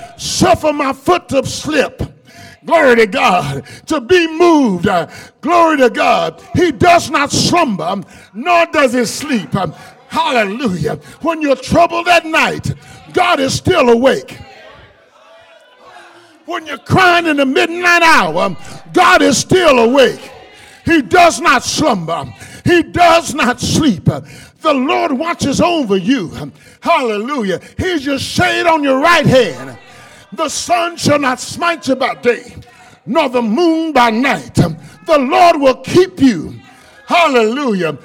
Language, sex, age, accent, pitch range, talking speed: English, male, 50-69, American, 245-345 Hz, 130 wpm